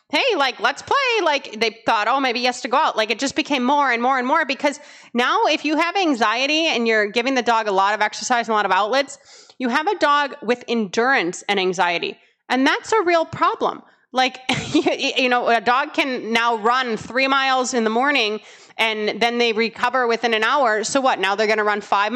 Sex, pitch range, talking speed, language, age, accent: female, 225-280 Hz, 225 wpm, English, 30-49, American